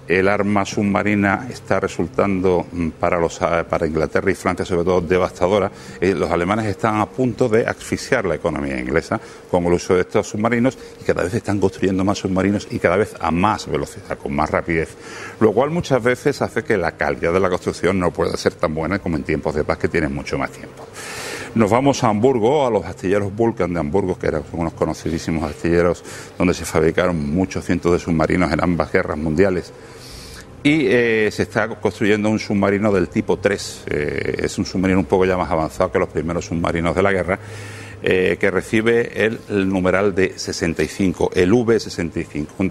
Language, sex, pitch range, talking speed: Spanish, male, 85-115 Hz, 190 wpm